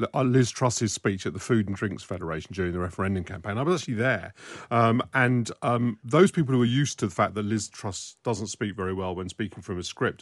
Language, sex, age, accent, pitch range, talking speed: English, male, 40-59, British, 100-125 Hz, 235 wpm